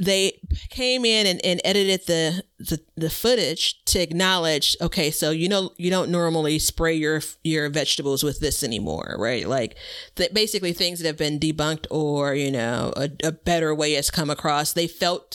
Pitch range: 155-190 Hz